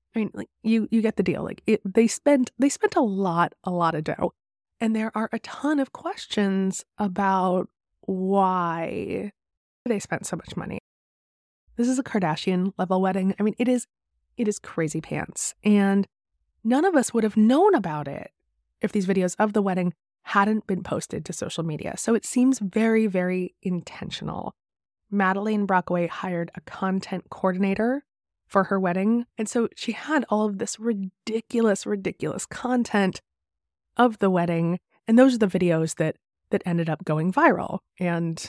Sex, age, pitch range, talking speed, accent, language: female, 20-39, 170-220 Hz, 170 wpm, American, English